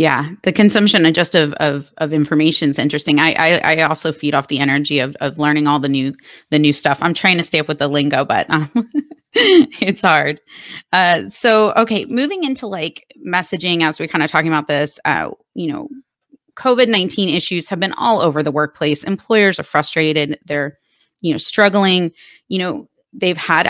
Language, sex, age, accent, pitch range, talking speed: English, female, 30-49, American, 150-180 Hz, 195 wpm